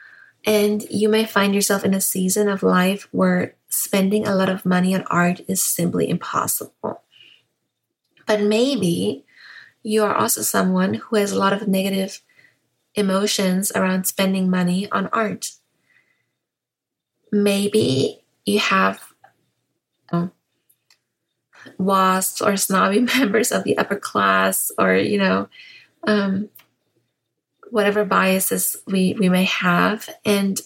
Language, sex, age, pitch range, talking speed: English, female, 20-39, 185-210 Hz, 120 wpm